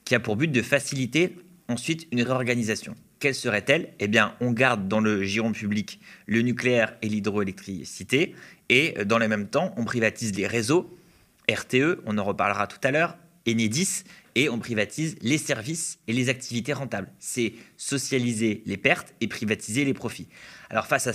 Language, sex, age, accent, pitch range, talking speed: French, male, 30-49, French, 110-145 Hz, 170 wpm